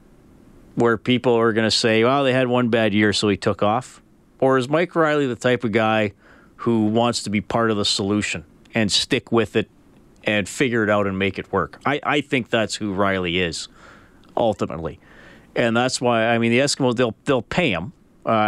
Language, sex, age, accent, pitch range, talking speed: English, male, 40-59, American, 110-155 Hz, 210 wpm